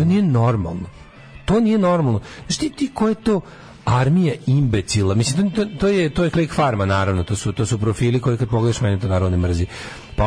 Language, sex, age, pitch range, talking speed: English, male, 40-59, 110-155 Hz, 205 wpm